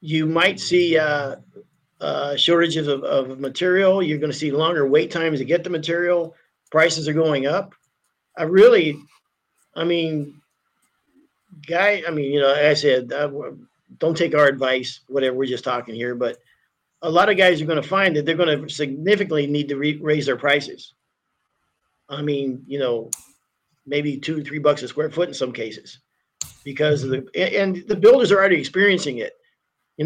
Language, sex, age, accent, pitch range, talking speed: English, male, 50-69, American, 145-180 Hz, 175 wpm